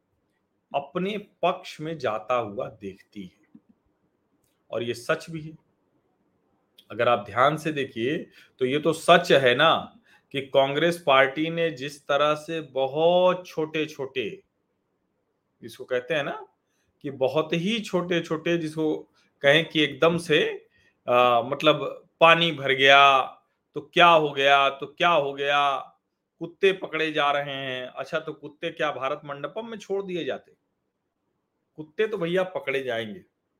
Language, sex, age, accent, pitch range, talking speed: Hindi, male, 40-59, native, 135-175 Hz, 145 wpm